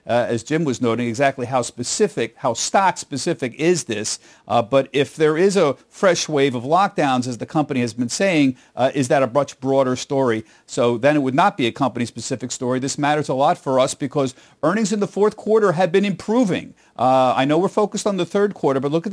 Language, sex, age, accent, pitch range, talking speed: English, male, 50-69, American, 140-195 Hz, 230 wpm